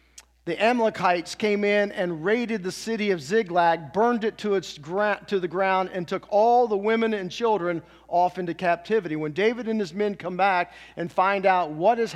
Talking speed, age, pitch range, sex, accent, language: 190 wpm, 40-59, 195-260 Hz, male, American, English